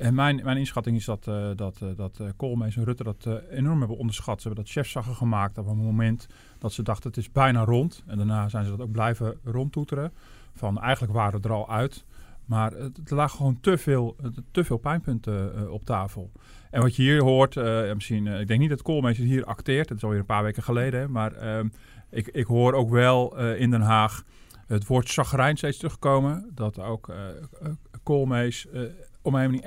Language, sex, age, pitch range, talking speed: Dutch, male, 40-59, 110-130 Hz, 225 wpm